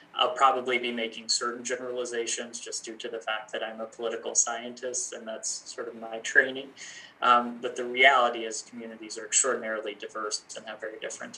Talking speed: 185 wpm